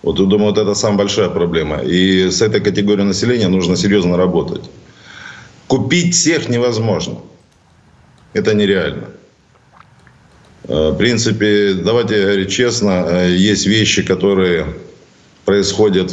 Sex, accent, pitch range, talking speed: male, native, 95-110 Hz, 110 wpm